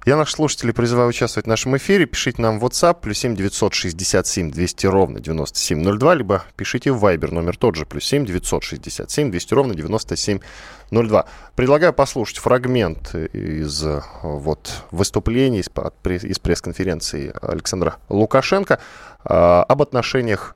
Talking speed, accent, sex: 145 wpm, native, male